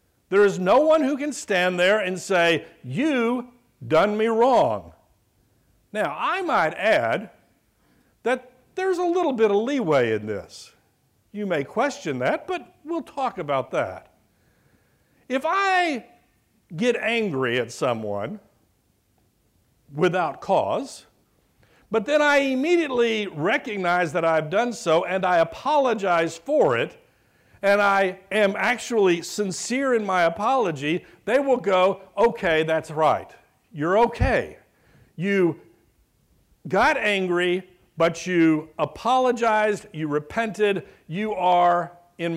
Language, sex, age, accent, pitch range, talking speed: English, male, 60-79, American, 170-245 Hz, 120 wpm